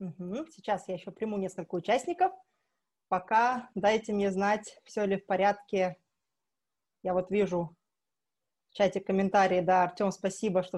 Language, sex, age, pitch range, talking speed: Russian, female, 20-39, 195-245 Hz, 135 wpm